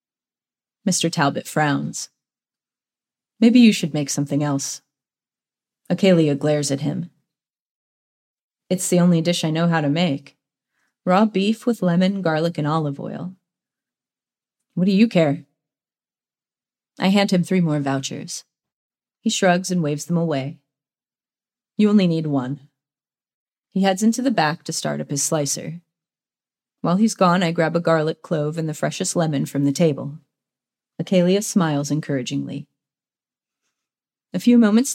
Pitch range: 145-190 Hz